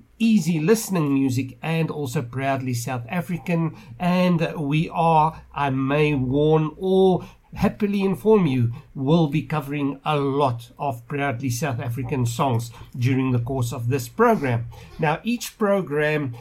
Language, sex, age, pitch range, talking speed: English, male, 60-79, 130-170 Hz, 135 wpm